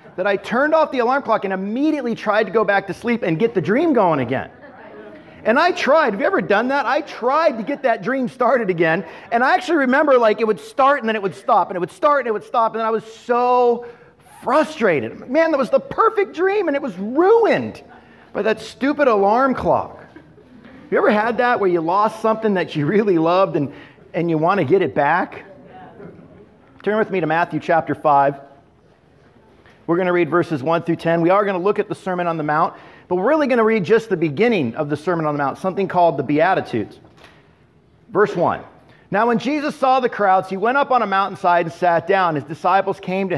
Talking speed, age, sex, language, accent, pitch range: 225 wpm, 40-59, male, English, American, 175-260 Hz